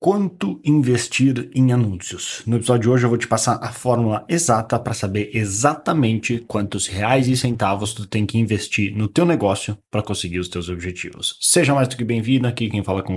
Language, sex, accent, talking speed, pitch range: Portuguese, male, Brazilian, 195 wpm, 95-120 Hz